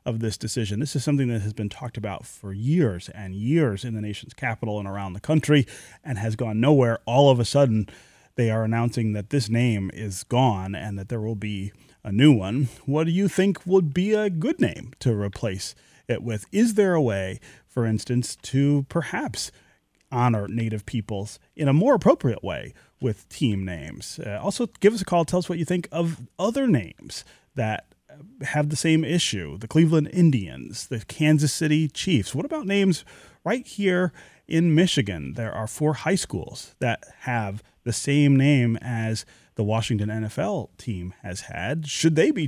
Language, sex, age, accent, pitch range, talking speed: English, male, 30-49, American, 110-150 Hz, 185 wpm